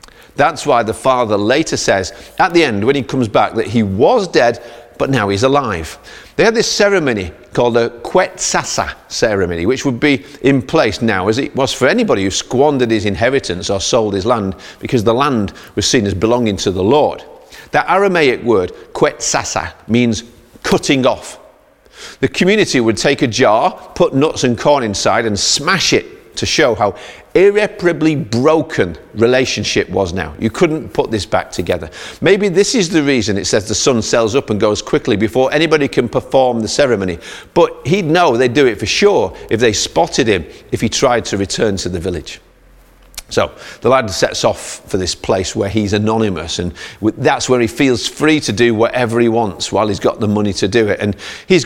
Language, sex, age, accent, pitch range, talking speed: English, male, 40-59, British, 105-145 Hz, 190 wpm